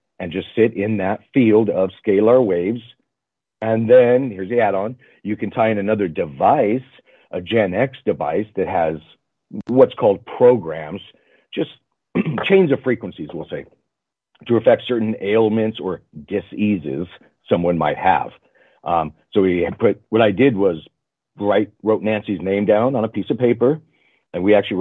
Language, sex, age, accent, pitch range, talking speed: English, male, 40-59, American, 100-120 Hz, 155 wpm